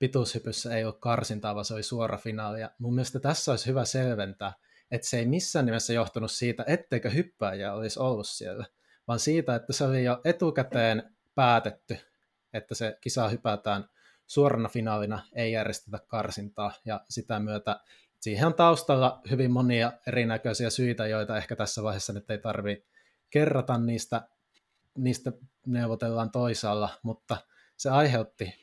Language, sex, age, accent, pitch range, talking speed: Finnish, male, 20-39, native, 105-125 Hz, 145 wpm